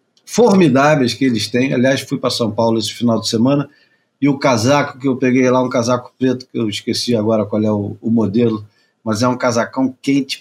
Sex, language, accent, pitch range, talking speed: male, Portuguese, Brazilian, 115-150 Hz, 215 wpm